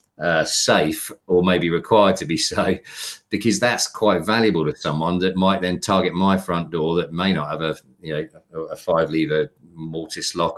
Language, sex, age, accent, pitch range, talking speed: English, male, 40-59, British, 85-100 Hz, 185 wpm